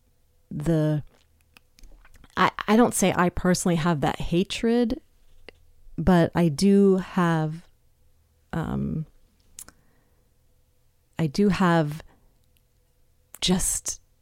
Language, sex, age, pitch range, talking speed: English, female, 30-49, 150-185 Hz, 80 wpm